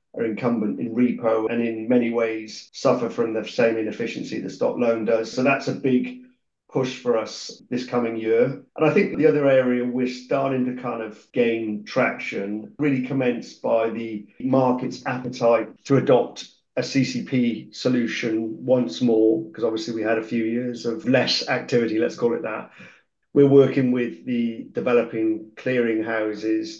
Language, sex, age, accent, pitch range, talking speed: English, male, 40-59, British, 110-125 Hz, 165 wpm